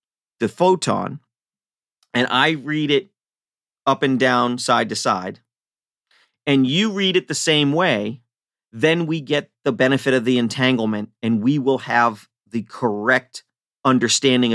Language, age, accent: English, 40-59, American